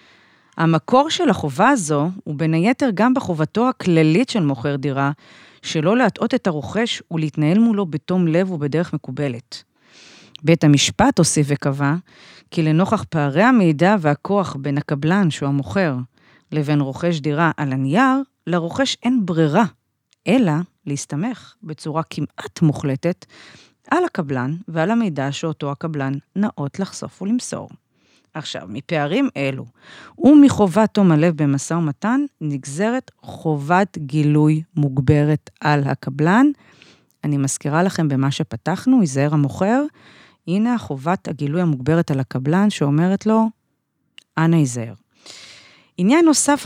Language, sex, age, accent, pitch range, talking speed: Hebrew, female, 40-59, native, 150-210 Hz, 115 wpm